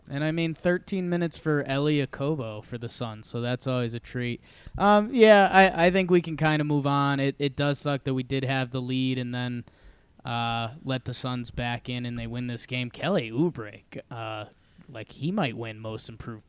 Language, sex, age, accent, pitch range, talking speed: English, male, 20-39, American, 125-155 Hz, 210 wpm